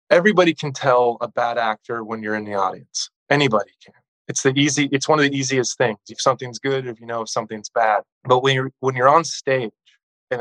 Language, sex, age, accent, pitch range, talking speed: English, male, 20-39, American, 110-130 Hz, 225 wpm